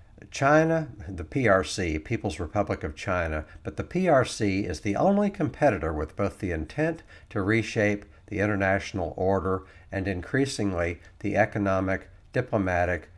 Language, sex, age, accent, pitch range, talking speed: English, male, 60-79, American, 90-110 Hz, 125 wpm